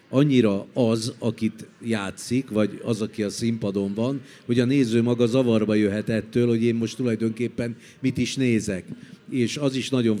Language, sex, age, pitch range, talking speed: Hungarian, male, 50-69, 105-125 Hz, 165 wpm